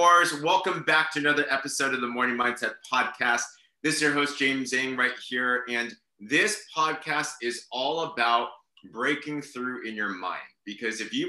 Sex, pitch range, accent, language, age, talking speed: male, 115-165 Hz, American, English, 30-49, 170 wpm